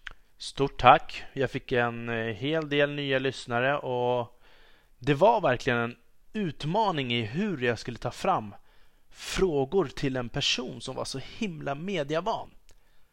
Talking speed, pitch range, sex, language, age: 135 wpm, 120-160 Hz, male, Swedish, 30-49